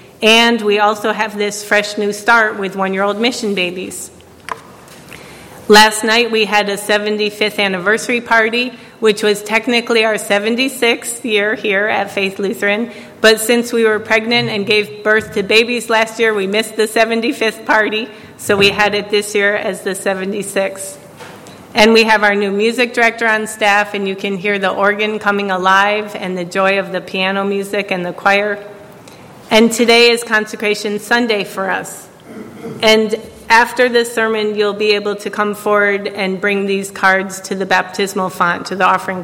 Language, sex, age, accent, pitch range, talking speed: English, female, 40-59, American, 195-225 Hz, 170 wpm